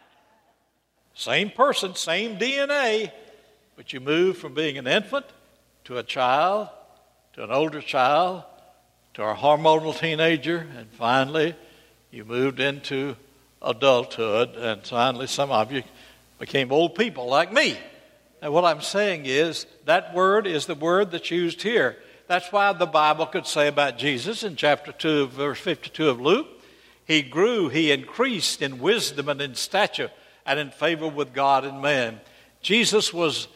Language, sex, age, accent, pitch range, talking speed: English, male, 60-79, American, 145-200 Hz, 150 wpm